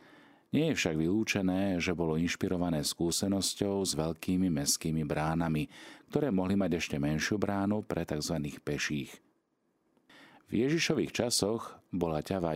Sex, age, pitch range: male, 40-59, 75-100 Hz